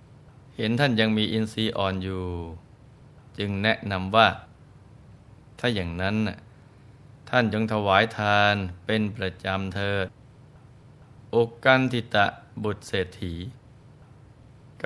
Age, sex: 20-39, male